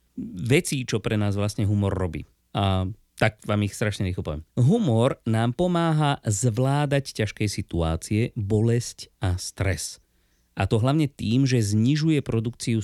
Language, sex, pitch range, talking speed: Slovak, male, 95-125 Hz, 135 wpm